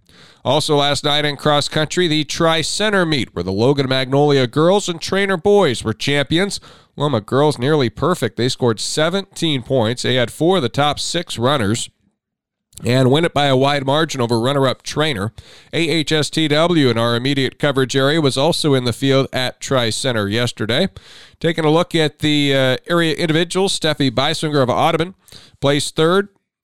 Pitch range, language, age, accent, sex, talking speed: 125-155 Hz, English, 40-59, American, male, 165 wpm